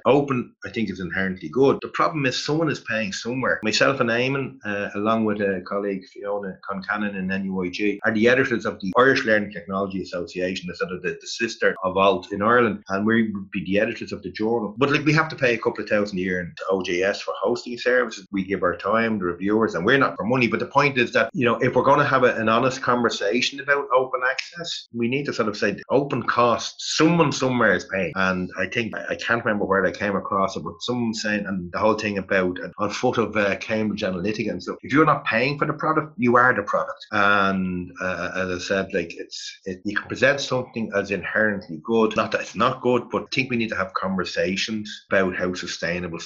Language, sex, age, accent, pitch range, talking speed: English, male, 30-49, Irish, 95-120 Hz, 235 wpm